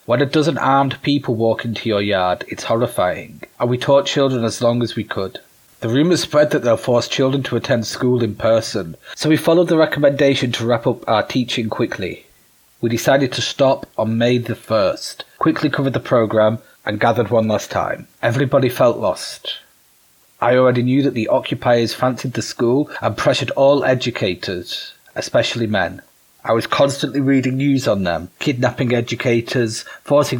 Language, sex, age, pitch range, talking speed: Ukrainian, male, 30-49, 115-140 Hz, 175 wpm